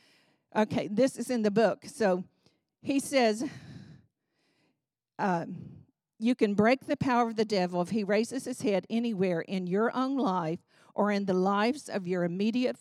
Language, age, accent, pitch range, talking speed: English, 50-69, American, 190-240 Hz, 165 wpm